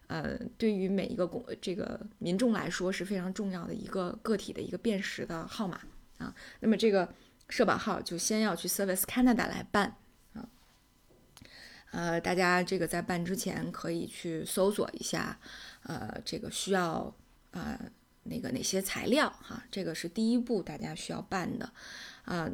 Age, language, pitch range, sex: 20-39, Chinese, 180-225 Hz, female